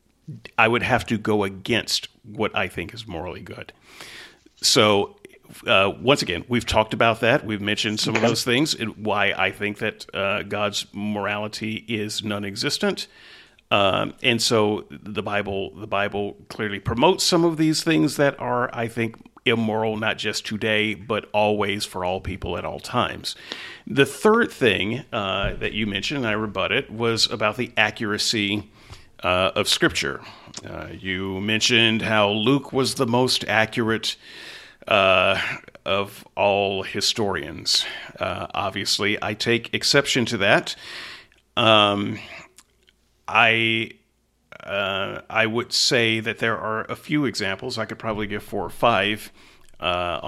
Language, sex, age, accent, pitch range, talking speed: English, male, 40-59, American, 105-120 Hz, 145 wpm